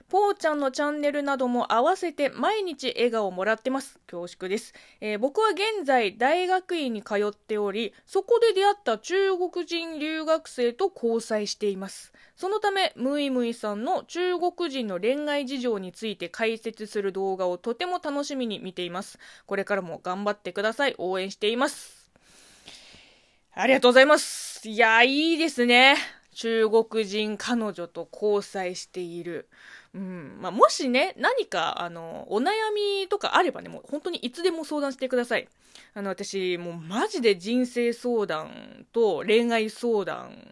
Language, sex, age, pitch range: Japanese, female, 20-39, 195-300 Hz